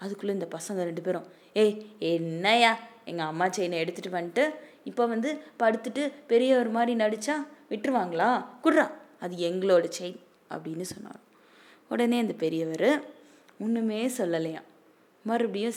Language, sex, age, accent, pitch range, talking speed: Tamil, female, 20-39, native, 175-235 Hz, 120 wpm